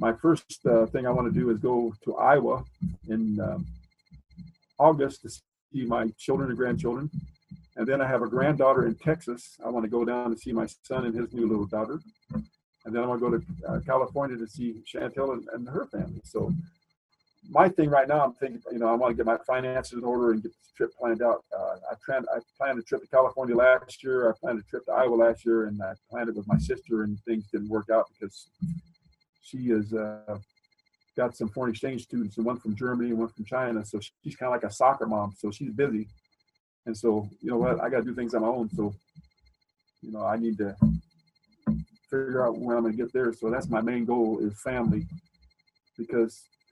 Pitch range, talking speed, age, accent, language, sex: 115-140 Hz, 225 wpm, 40-59, American, English, male